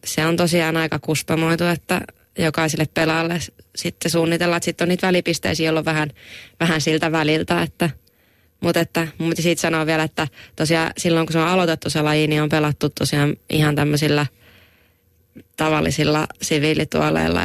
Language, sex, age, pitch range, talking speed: Finnish, female, 20-39, 145-165 Hz, 155 wpm